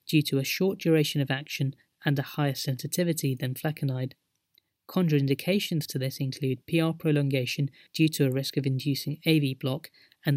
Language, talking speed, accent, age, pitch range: English, 160 wpm, British, 30-49, 135-160 Hz